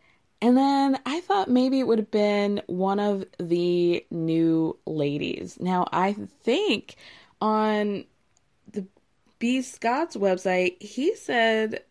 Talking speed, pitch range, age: 120 wpm, 185-275 Hz, 20-39